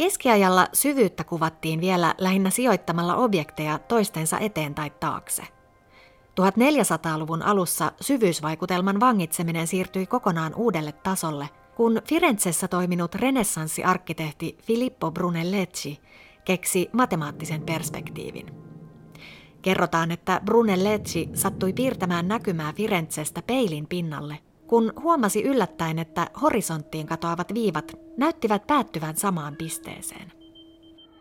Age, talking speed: 30-49, 90 wpm